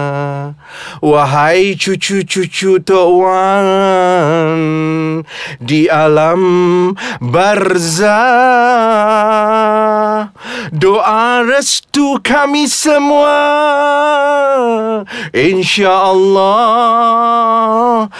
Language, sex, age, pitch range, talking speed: Malay, male, 40-59, 160-230 Hz, 35 wpm